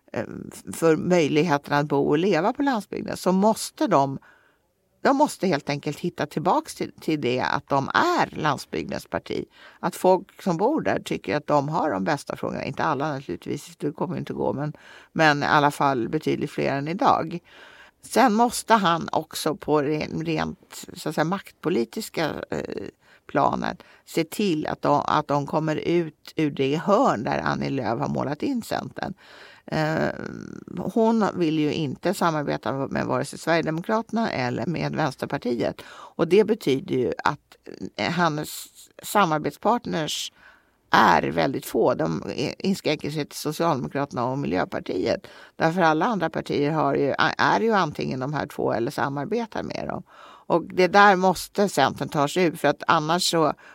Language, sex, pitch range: Swedish, female, 145-205 Hz